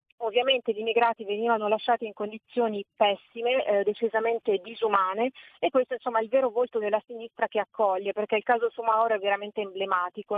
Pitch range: 210-245 Hz